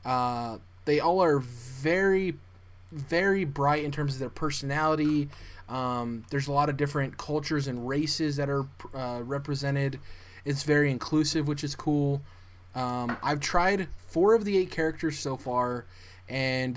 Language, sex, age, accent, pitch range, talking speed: English, male, 20-39, American, 120-155 Hz, 150 wpm